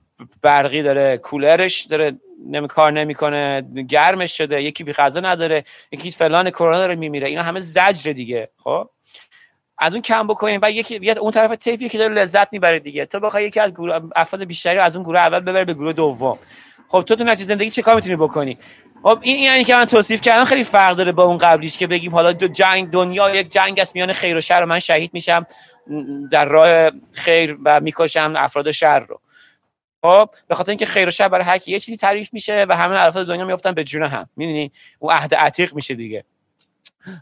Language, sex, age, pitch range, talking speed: Persian, male, 30-49, 150-195 Hz, 190 wpm